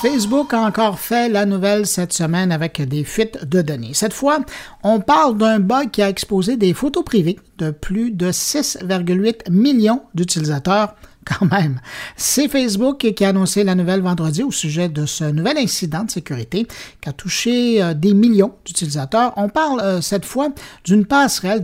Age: 50-69